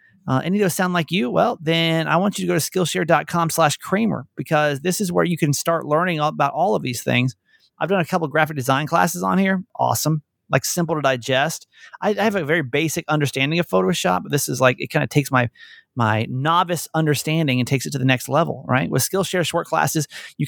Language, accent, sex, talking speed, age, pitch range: English, American, male, 235 wpm, 30-49, 135-175 Hz